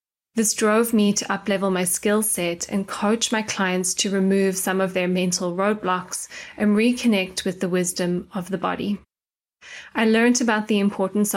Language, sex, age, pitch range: English, female, 20-39, 185-215 Hz